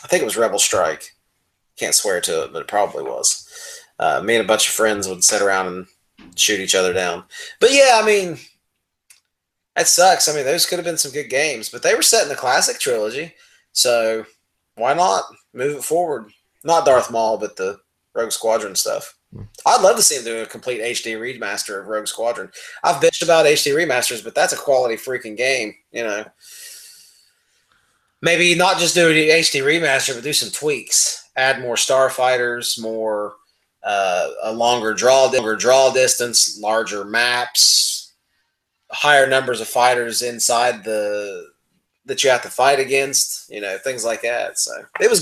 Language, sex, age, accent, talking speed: English, male, 30-49, American, 180 wpm